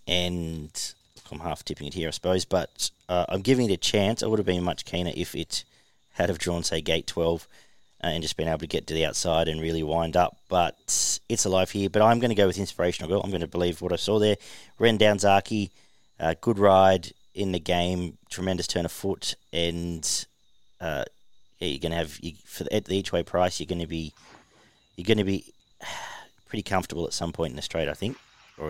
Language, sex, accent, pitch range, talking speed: English, male, Australian, 85-100 Hz, 225 wpm